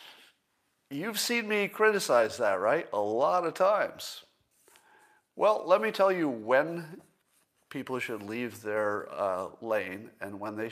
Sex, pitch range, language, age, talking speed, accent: male, 120-175 Hz, English, 50-69, 140 wpm, American